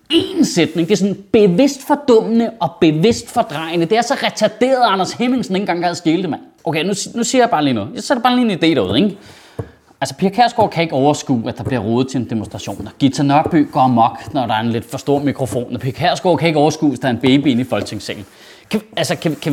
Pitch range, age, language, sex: 160-235 Hz, 30-49, Danish, male